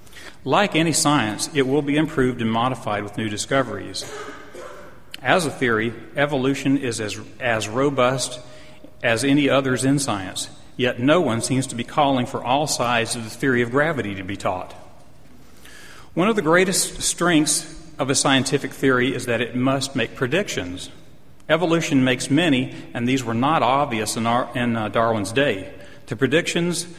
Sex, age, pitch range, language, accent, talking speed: male, 40-59, 120-150 Hz, English, American, 165 wpm